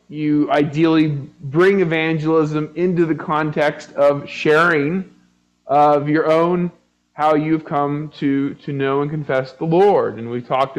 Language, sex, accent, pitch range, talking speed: English, male, American, 135-175 Hz, 140 wpm